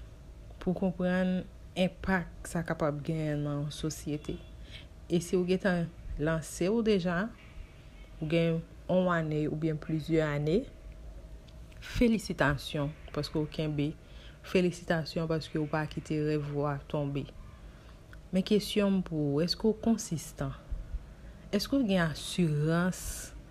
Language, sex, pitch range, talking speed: French, female, 150-180 Hz, 130 wpm